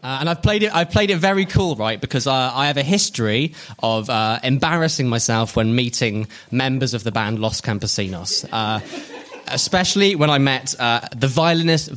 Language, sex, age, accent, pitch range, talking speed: English, male, 20-39, British, 110-150 Hz, 185 wpm